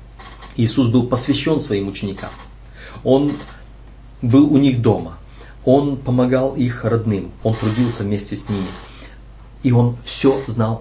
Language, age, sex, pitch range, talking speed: Russian, 30-49, male, 105-125 Hz, 130 wpm